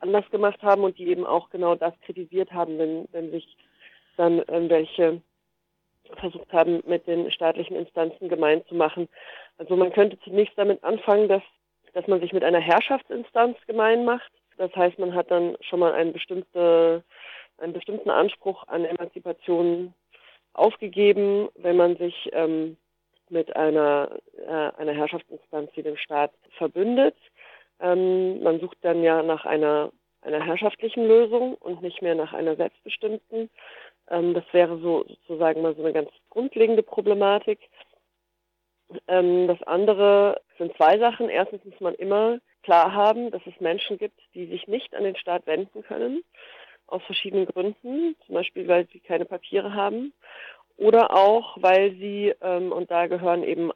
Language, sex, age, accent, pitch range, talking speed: German, female, 40-59, German, 170-205 Hz, 155 wpm